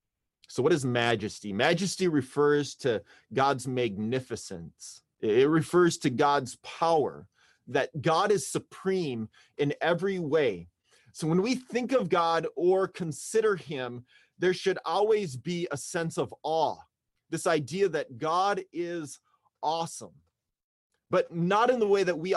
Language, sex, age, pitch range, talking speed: English, male, 30-49, 145-190 Hz, 135 wpm